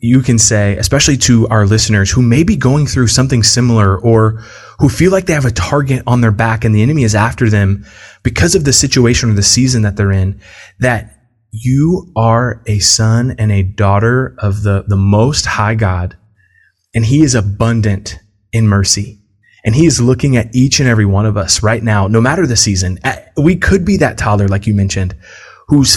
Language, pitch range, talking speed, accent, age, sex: English, 105-130 Hz, 200 wpm, American, 20-39, male